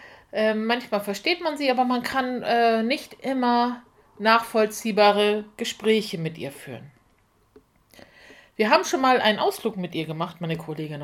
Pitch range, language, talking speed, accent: 195-265 Hz, German, 145 wpm, German